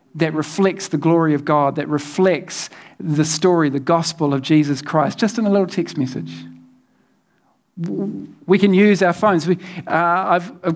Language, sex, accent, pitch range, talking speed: English, male, Australian, 150-185 Hz, 165 wpm